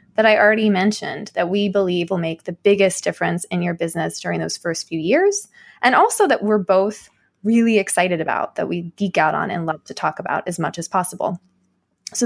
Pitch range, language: 175-215 Hz, English